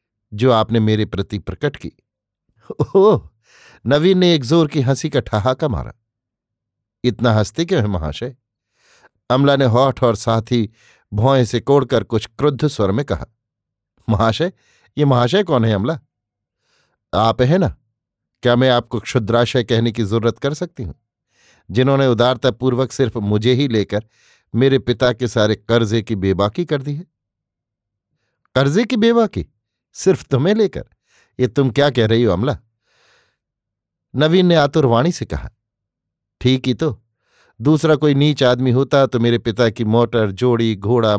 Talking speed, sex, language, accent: 150 wpm, male, Hindi, native